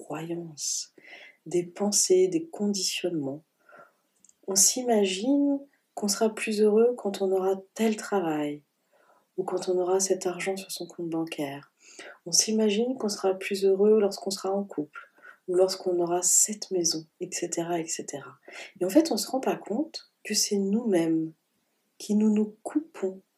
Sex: female